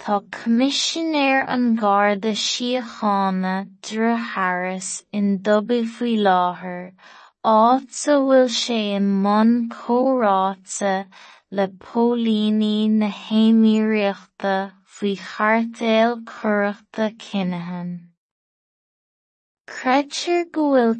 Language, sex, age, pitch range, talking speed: English, female, 20-39, 200-235 Hz, 70 wpm